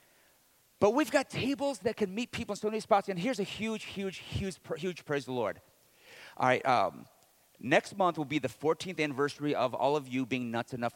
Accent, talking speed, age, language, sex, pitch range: American, 220 wpm, 50-69, English, male, 120-170 Hz